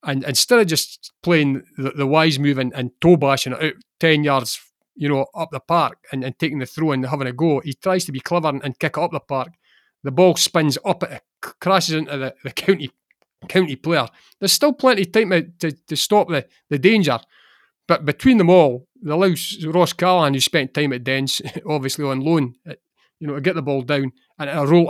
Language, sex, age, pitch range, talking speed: English, male, 30-49, 135-175 Hz, 230 wpm